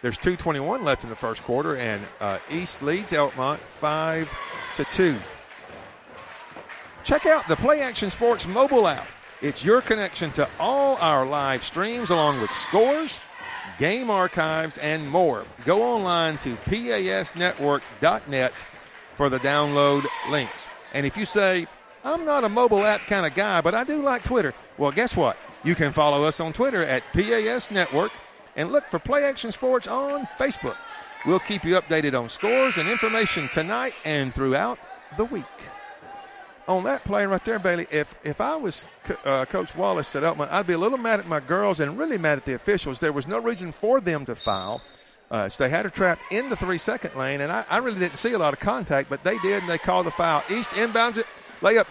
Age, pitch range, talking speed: 50-69, 150-235 Hz, 190 wpm